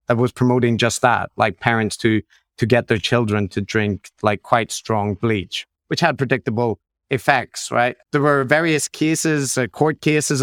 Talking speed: 165 wpm